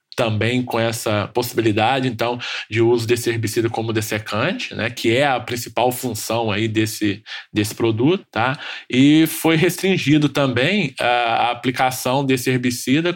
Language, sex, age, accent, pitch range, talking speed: Portuguese, male, 20-39, Brazilian, 115-140 Hz, 135 wpm